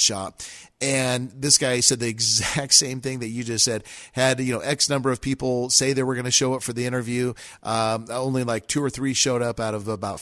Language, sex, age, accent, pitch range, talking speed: English, male, 40-59, American, 125-155 Hz, 240 wpm